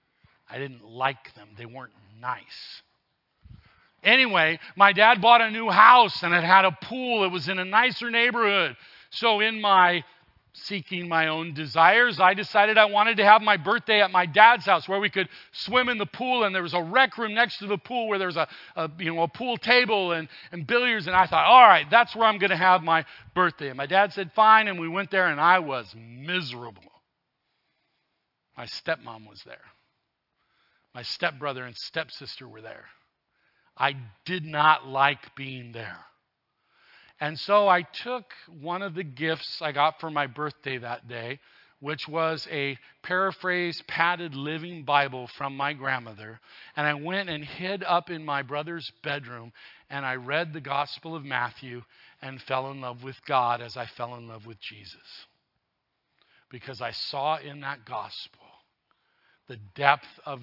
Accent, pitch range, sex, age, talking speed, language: American, 130-190 Hz, male, 40-59, 175 wpm, English